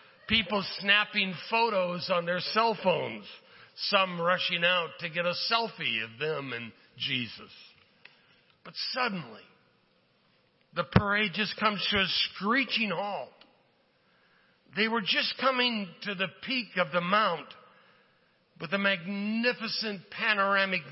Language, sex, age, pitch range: English, male, 60-79, 170-205 Hz